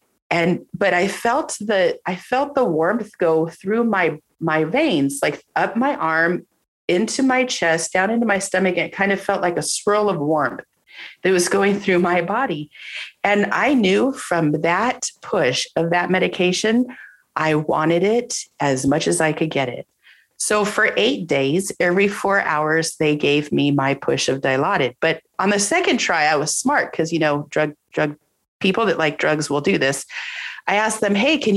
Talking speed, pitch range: 190 wpm, 160-235 Hz